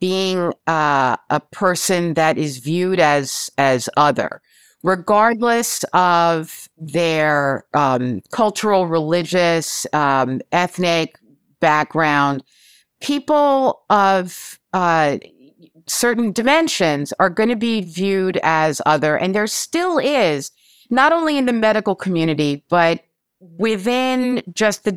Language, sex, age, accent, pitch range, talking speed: English, female, 50-69, American, 165-225 Hz, 105 wpm